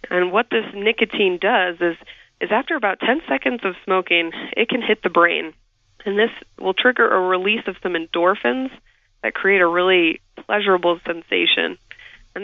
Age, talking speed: 20-39, 165 wpm